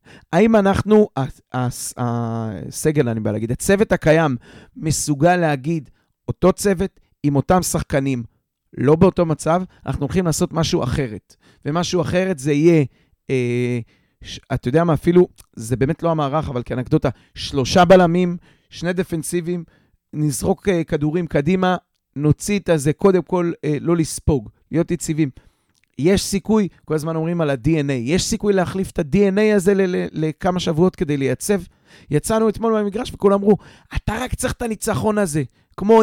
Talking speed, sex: 135 wpm, male